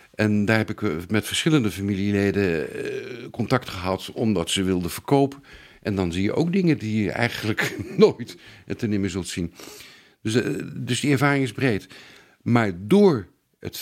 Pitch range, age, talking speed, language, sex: 100-140 Hz, 50-69, 155 wpm, Dutch, male